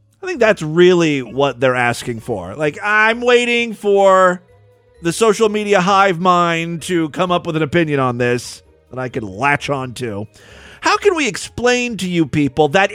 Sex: male